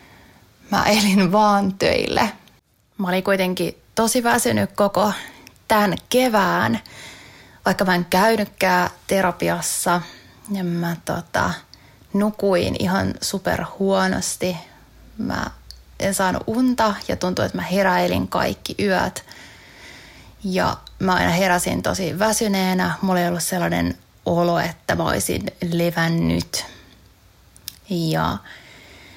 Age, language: 20-39, Finnish